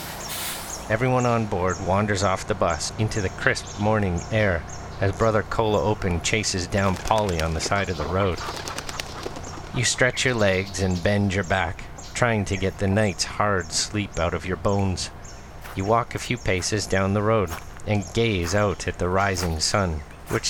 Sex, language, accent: male, English, American